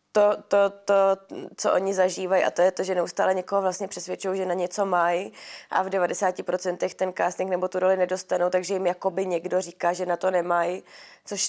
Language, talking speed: Czech, 200 wpm